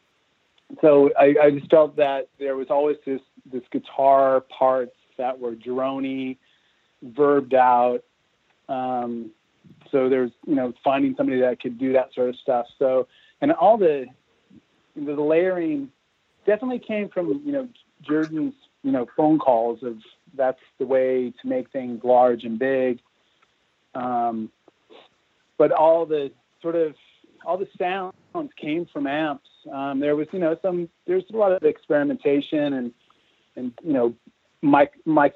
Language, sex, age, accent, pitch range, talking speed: English, male, 40-59, American, 130-165 Hz, 145 wpm